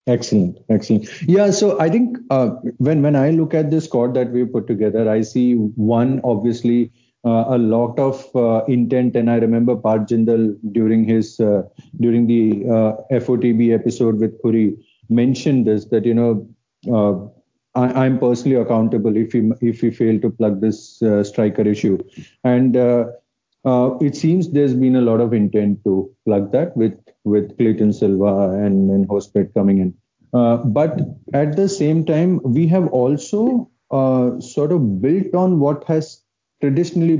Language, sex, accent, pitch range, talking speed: English, male, Indian, 110-135 Hz, 165 wpm